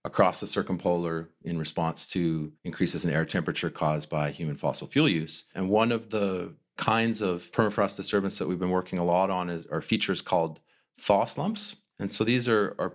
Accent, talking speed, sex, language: American, 190 wpm, male, English